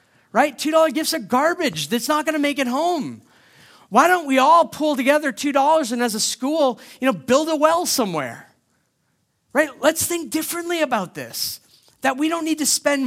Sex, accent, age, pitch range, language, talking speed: male, American, 40-59, 160-255 Hz, English, 190 wpm